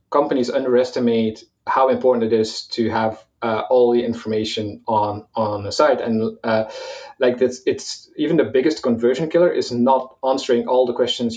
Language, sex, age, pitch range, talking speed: English, male, 30-49, 115-130 Hz, 175 wpm